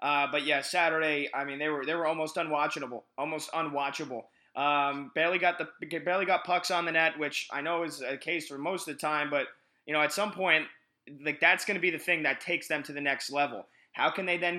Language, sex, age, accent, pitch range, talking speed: English, male, 20-39, American, 150-175 Hz, 245 wpm